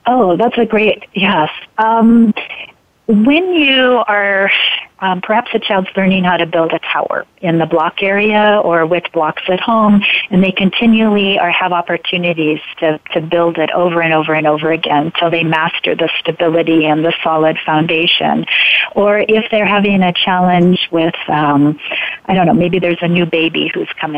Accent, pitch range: American, 165-200 Hz